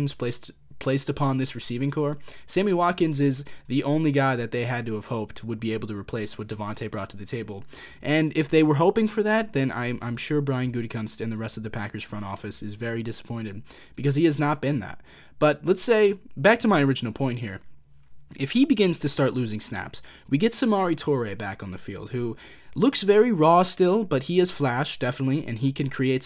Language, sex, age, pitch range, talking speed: English, male, 20-39, 115-170 Hz, 220 wpm